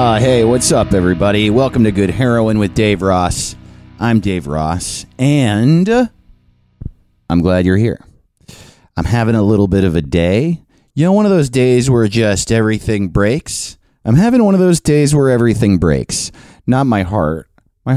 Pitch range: 95-145 Hz